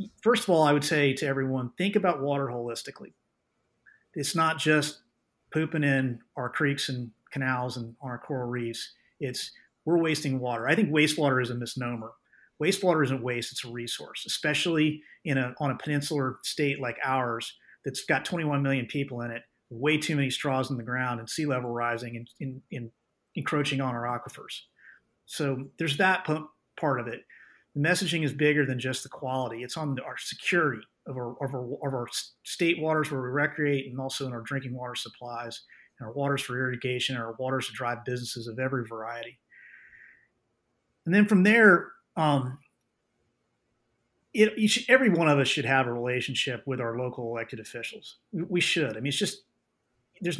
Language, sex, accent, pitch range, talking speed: English, male, American, 125-155 Hz, 185 wpm